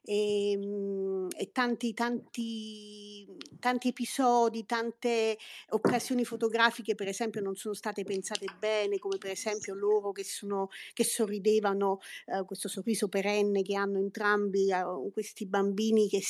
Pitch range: 200-235 Hz